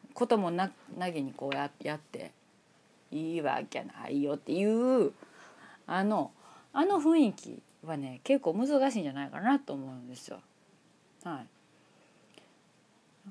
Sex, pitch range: female, 150-245 Hz